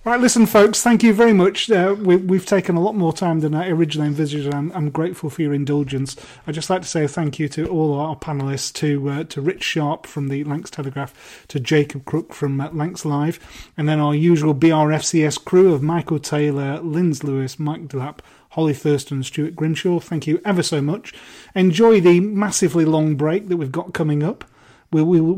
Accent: British